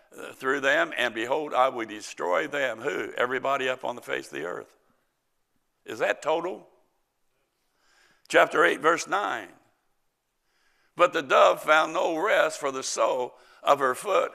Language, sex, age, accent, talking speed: English, male, 60-79, American, 150 wpm